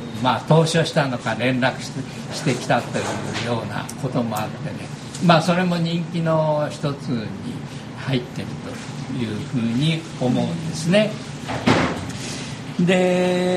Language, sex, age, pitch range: Japanese, male, 50-69, 125-180 Hz